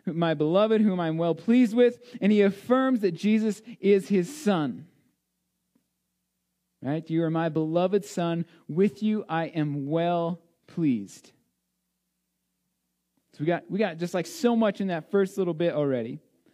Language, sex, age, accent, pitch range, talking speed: English, male, 40-59, American, 155-205 Hz, 150 wpm